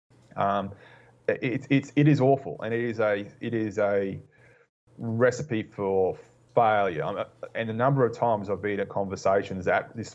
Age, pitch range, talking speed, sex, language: 20-39, 100-130 Hz, 160 wpm, male, English